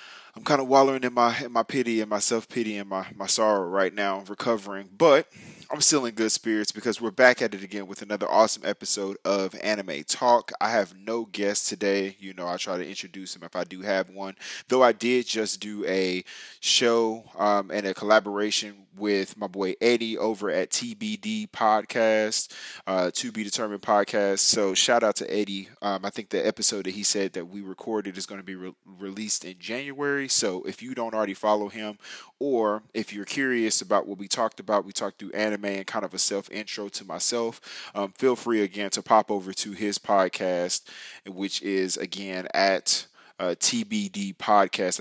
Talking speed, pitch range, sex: 195 wpm, 95-115 Hz, male